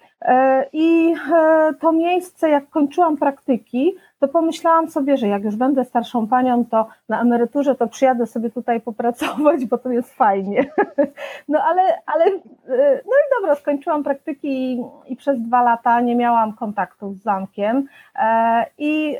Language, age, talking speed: Polish, 30-49, 145 wpm